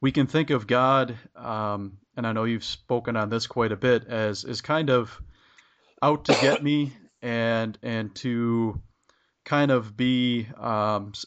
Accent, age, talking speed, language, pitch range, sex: American, 30-49, 165 wpm, English, 110-130 Hz, male